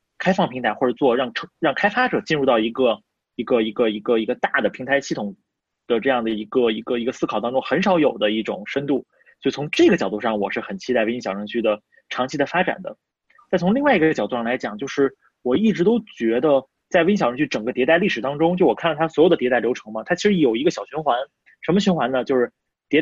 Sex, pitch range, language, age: male, 120-175 Hz, Chinese, 20-39